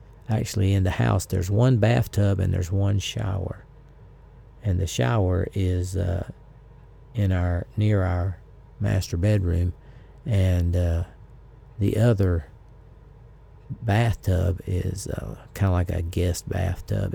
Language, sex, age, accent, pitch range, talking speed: English, male, 50-69, American, 95-120 Hz, 125 wpm